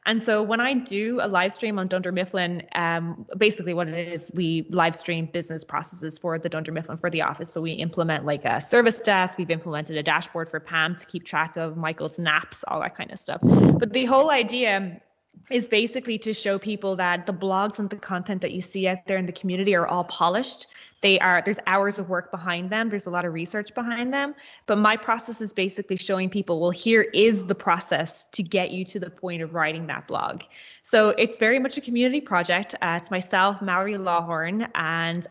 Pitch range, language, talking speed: 170-210 Hz, English, 220 wpm